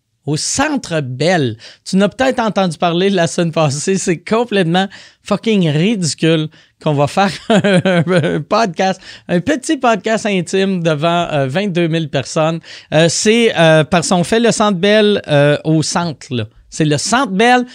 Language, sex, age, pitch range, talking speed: French, male, 30-49, 160-210 Hz, 160 wpm